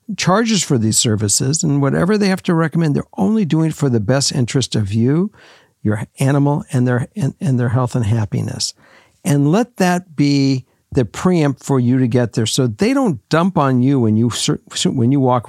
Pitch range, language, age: 120-155 Hz, English, 60-79